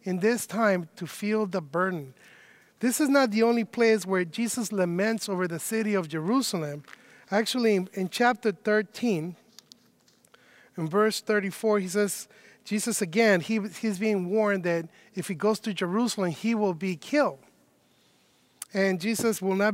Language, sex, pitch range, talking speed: English, male, 185-225 Hz, 155 wpm